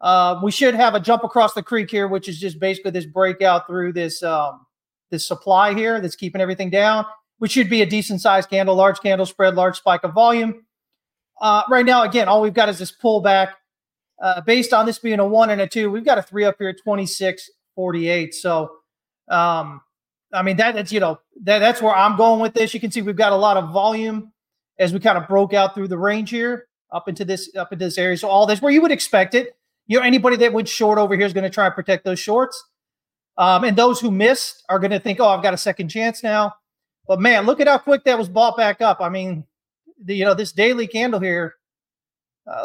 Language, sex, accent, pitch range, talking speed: English, male, American, 185-225 Hz, 240 wpm